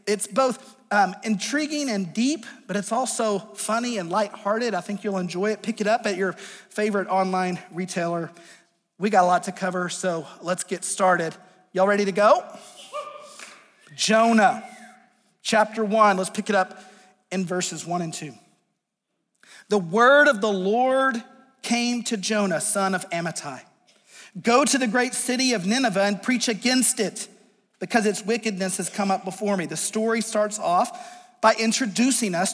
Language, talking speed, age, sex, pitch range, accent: English, 160 wpm, 40-59, male, 195-245 Hz, American